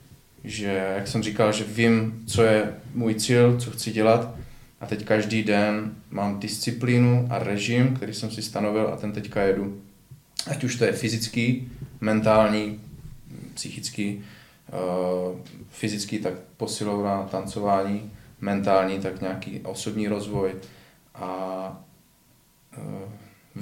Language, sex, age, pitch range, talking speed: Czech, male, 20-39, 100-115 Hz, 120 wpm